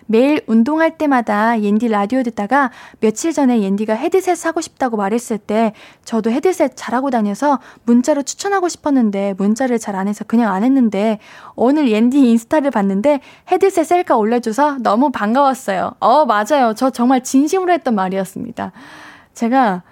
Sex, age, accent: female, 10-29, native